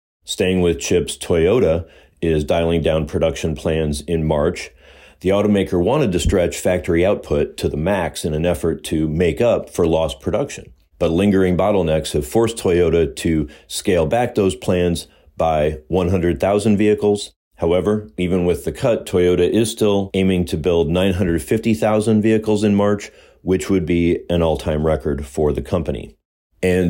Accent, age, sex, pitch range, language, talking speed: American, 40-59, male, 80-95 Hz, English, 155 wpm